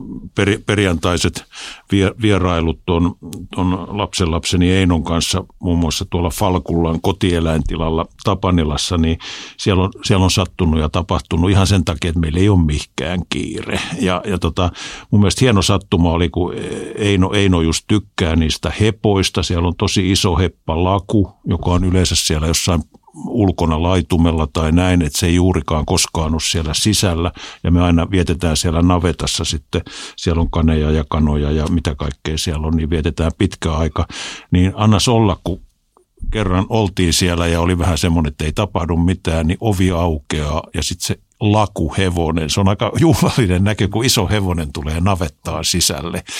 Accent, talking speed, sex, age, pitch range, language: native, 160 wpm, male, 50-69, 85-100 Hz, Finnish